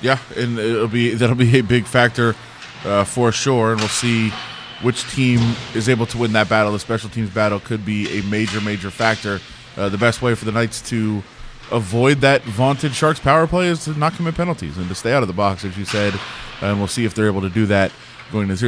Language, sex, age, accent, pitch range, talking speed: English, male, 20-39, American, 110-130 Hz, 230 wpm